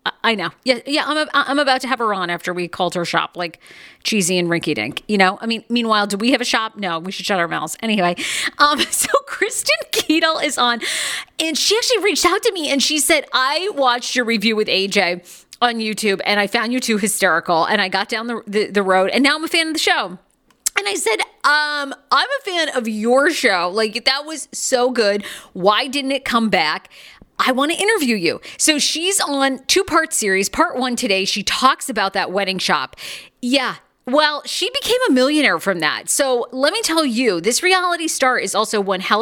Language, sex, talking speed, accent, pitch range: English, female, 220 wpm, American, 195-280 Hz